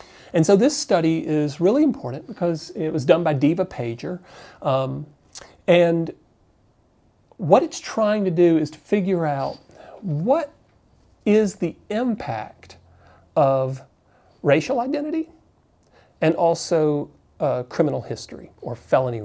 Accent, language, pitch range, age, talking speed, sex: American, English, 125-180 Hz, 40-59, 120 wpm, male